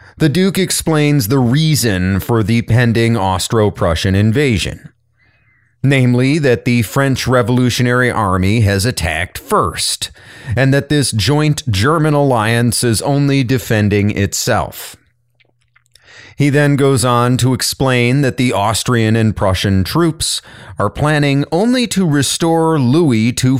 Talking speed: 120 wpm